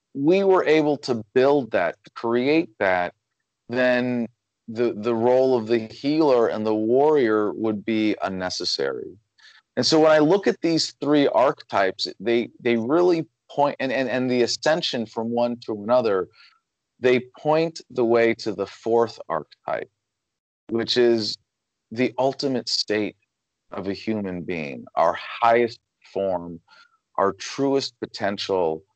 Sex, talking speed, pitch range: male, 135 wpm, 105-130 Hz